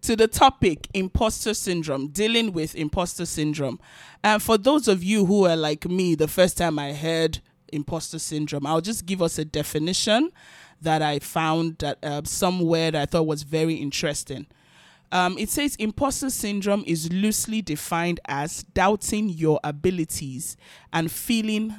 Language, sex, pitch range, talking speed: English, male, 160-205 Hz, 160 wpm